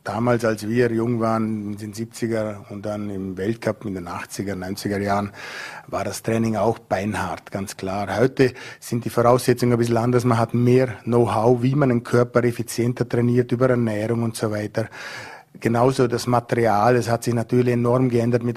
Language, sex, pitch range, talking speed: German, male, 115-125 Hz, 180 wpm